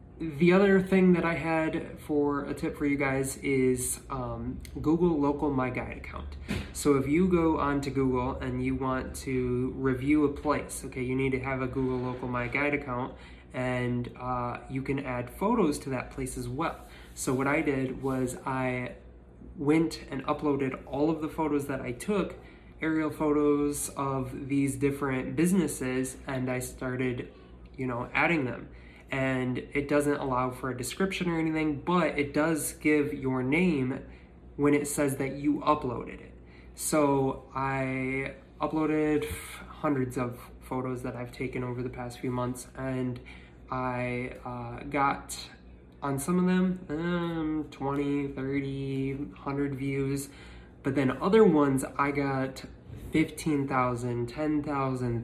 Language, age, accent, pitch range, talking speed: English, 20-39, American, 125-150 Hz, 150 wpm